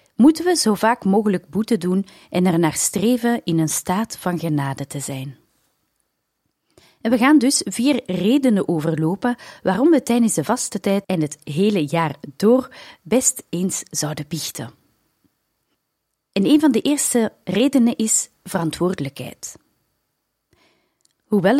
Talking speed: 135 wpm